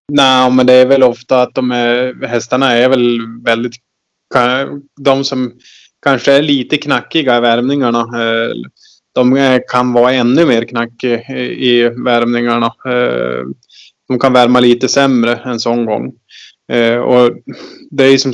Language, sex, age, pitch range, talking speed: Swedish, male, 20-39, 115-125 Hz, 130 wpm